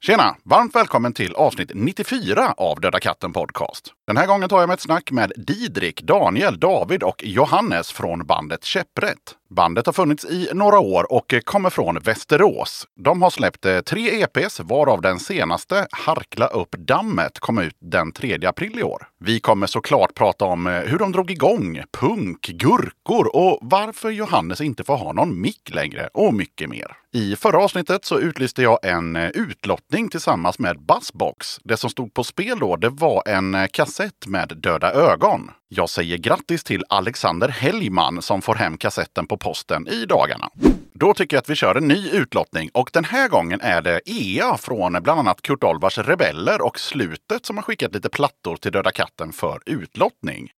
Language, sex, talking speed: Swedish, male, 180 wpm